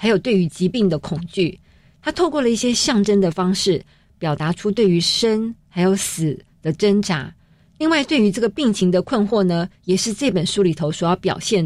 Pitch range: 175-220 Hz